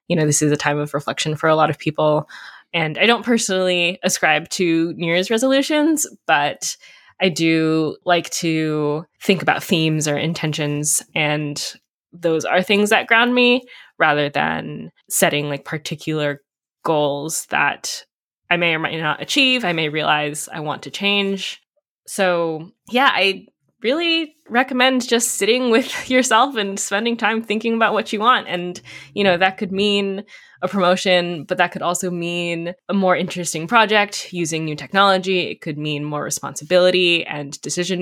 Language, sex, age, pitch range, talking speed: English, female, 10-29, 155-200 Hz, 165 wpm